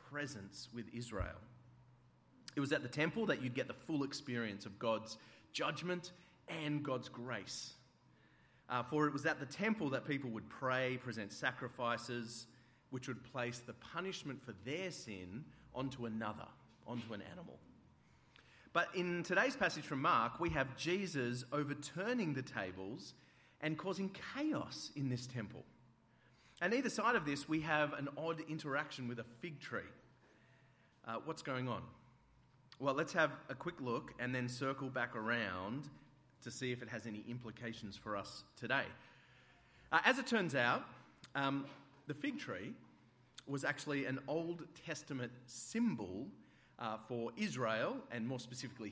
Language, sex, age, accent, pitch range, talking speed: English, male, 30-49, Australian, 120-150 Hz, 150 wpm